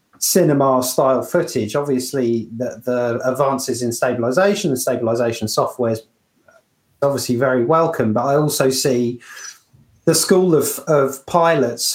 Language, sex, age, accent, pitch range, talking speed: English, male, 30-49, British, 120-150 Hz, 125 wpm